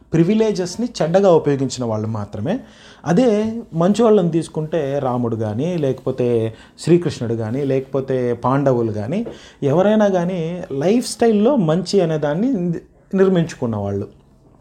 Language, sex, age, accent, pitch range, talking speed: English, male, 30-49, Indian, 130-175 Hz, 105 wpm